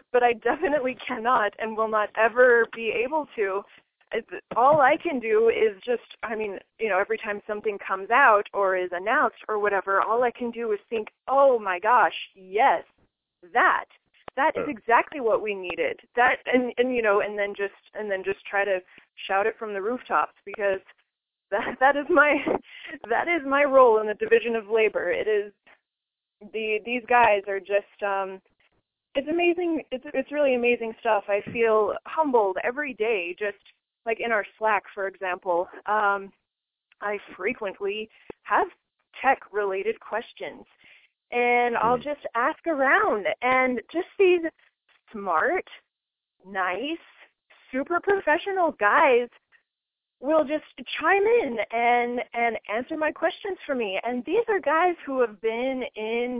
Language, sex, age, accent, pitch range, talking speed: English, female, 20-39, American, 205-290 Hz, 155 wpm